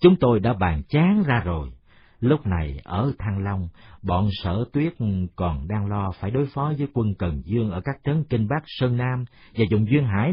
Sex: male